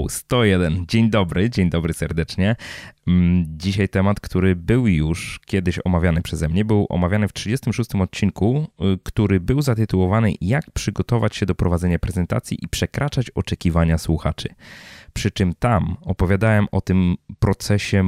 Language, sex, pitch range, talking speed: Polish, male, 85-110 Hz, 135 wpm